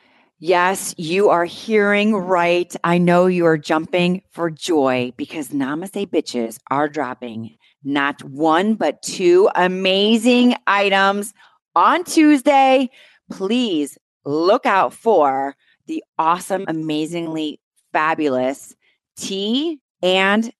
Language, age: English, 30-49